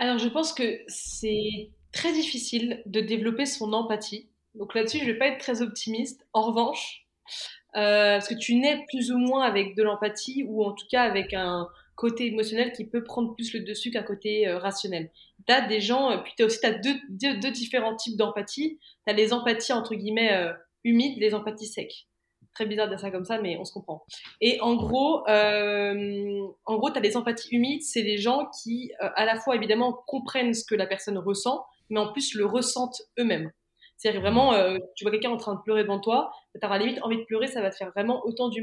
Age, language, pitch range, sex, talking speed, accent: 20-39, French, 205-245 Hz, female, 225 wpm, French